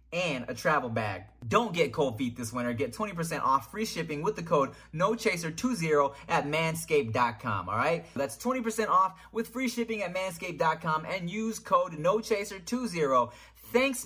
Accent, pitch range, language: American, 155-225 Hz, English